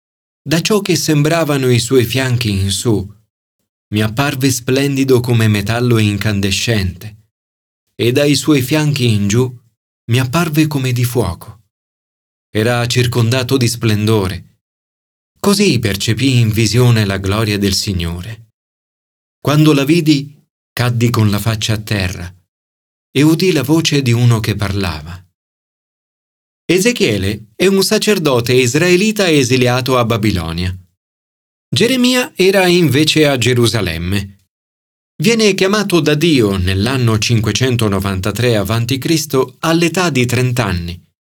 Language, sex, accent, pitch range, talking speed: Italian, male, native, 105-155 Hz, 115 wpm